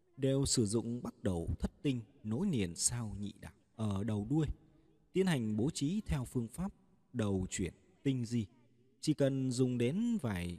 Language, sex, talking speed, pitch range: Vietnamese, male, 175 wpm, 100-135 Hz